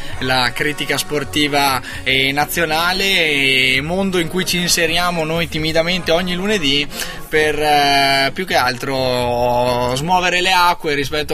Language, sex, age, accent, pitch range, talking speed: Italian, male, 20-39, native, 135-165 Hz, 115 wpm